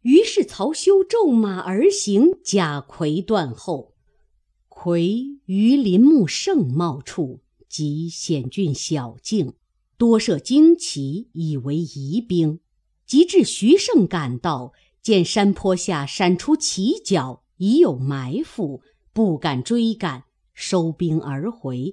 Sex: female